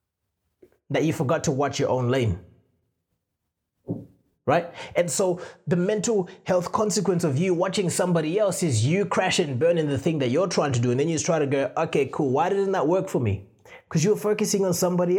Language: English